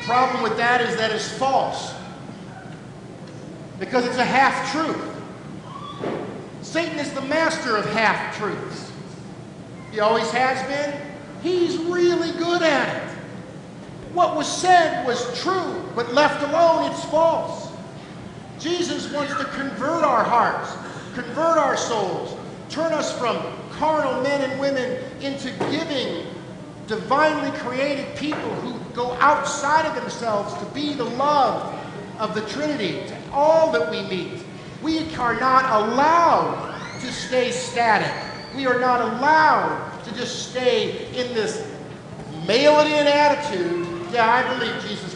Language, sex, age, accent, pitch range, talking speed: English, male, 50-69, American, 195-295 Hz, 130 wpm